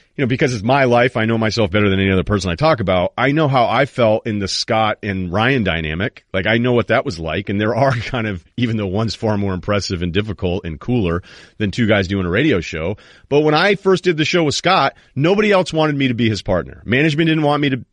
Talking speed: 265 wpm